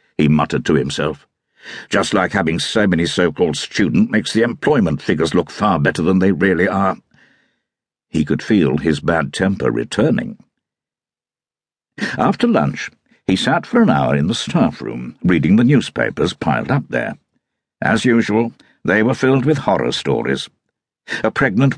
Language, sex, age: English, male, 60-79